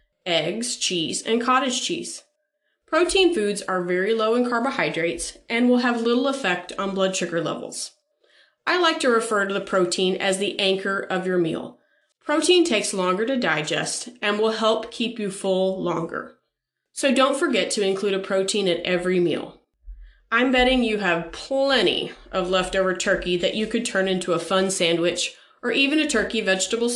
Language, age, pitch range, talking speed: English, 30-49, 185-265 Hz, 170 wpm